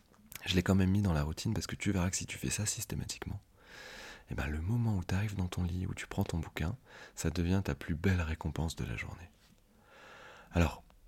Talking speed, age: 235 wpm, 30-49